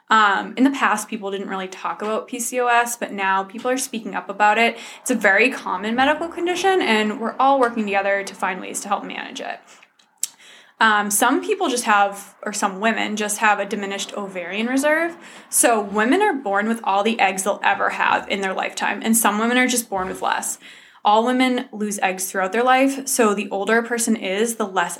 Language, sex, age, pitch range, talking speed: English, female, 20-39, 205-250 Hz, 210 wpm